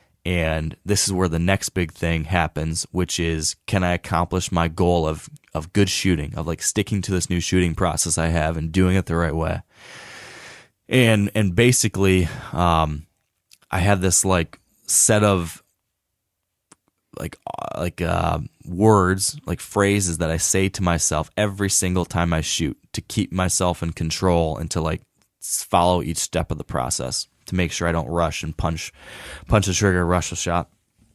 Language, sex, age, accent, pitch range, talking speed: English, male, 20-39, American, 85-100 Hz, 170 wpm